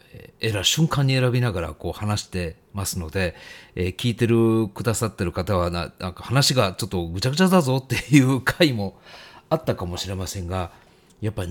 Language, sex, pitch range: Japanese, male, 95-140 Hz